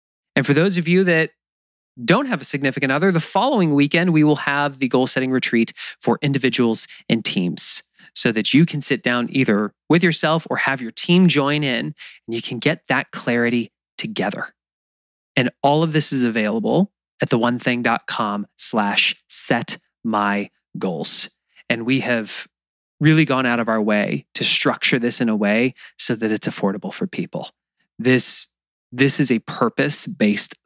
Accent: American